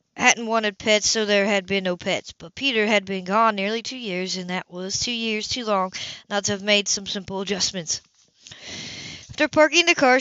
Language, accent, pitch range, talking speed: English, American, 195-250 Hz, 205 wpm